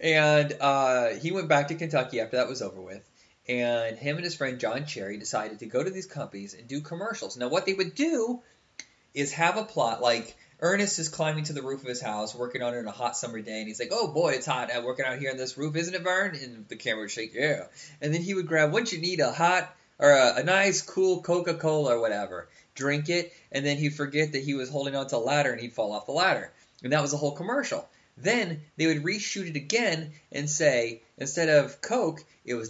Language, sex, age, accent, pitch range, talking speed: English, male, 20-39, American, 135-185 Hz, 245 wpm